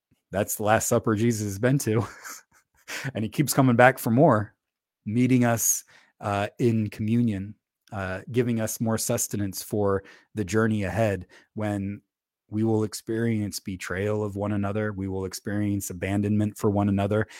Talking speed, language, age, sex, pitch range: 150 wpm, English, 30-49, male, 100-120 Hz